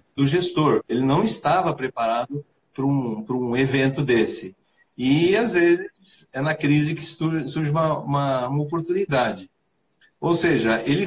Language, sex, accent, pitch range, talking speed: Portuguese, male, Brazilian, 120-160 Hz, 145 wpm